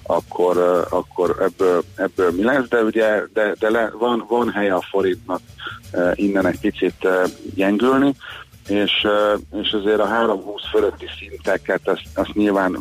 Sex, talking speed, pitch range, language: male, 140 wpm, 100-120 Hz, Hungarian